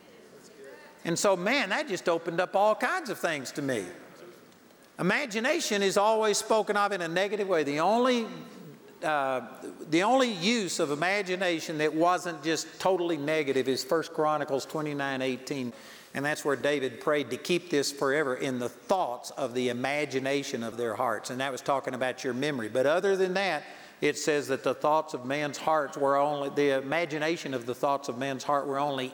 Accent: American